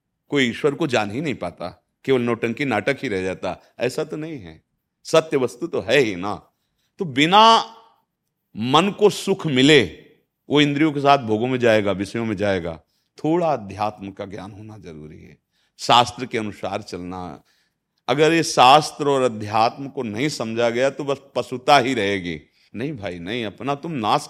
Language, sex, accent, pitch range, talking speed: Hindi, male, native, 115-145 Hz, 175 wpm